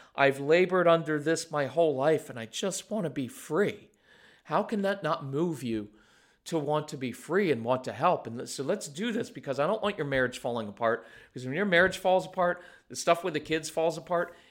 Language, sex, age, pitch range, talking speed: English, male, 40-59, 135-185 Hz, 230 wpm